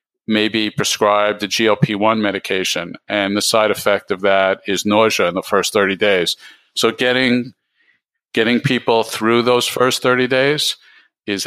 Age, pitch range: 50-69, 100-115 Hz